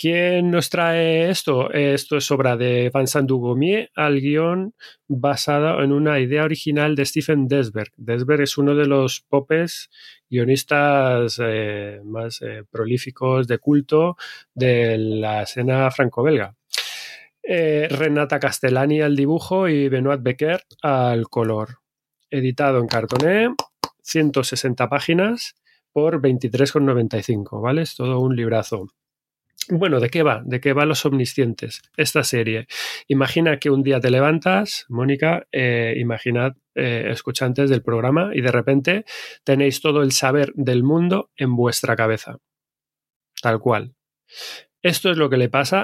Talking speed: 135 wpm